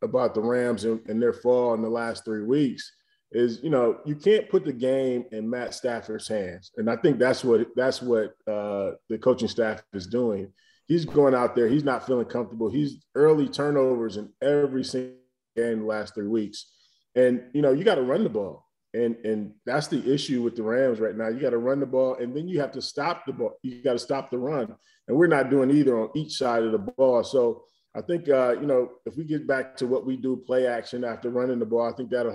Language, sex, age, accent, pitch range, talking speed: English, male, 20-39, American, 115-140 Hz, 240 wpm